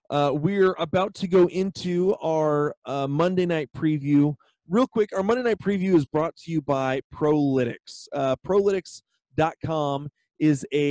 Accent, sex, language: American, male, English